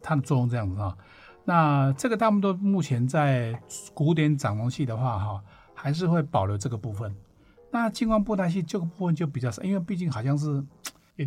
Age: 50-69